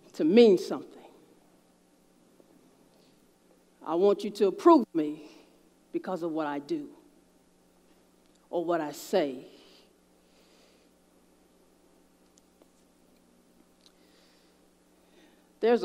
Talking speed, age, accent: 70 wpm, 40-59, American